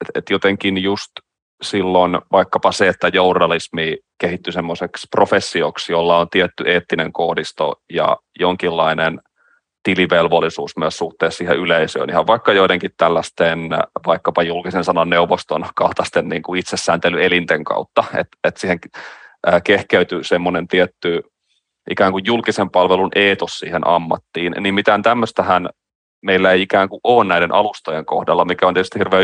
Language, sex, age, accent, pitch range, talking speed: Finnish, male, 30-49, native, 85-95 Hz, 130 wpm